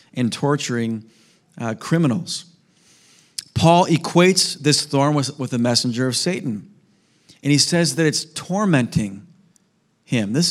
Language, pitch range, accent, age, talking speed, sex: English, 130-170 Hz, American, 40-59, 125 wpm, male